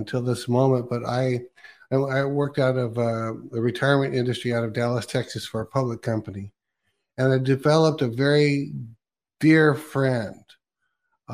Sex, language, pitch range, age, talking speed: male, English, 120-135 Hz, 60-79, 155 wpm